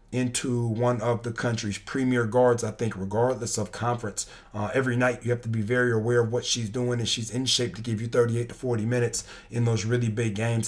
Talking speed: 230 wpm